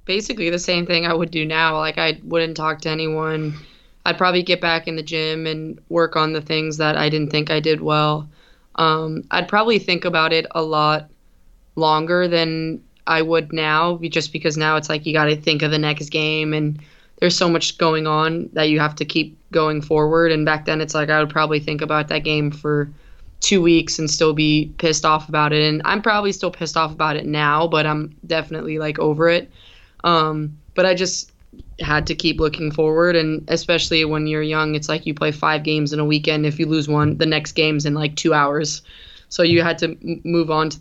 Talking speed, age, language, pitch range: 220 wpm, 20-39, English, 150-165 Hz